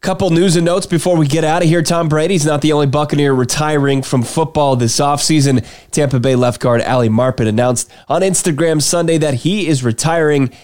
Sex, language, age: male, English, 20-39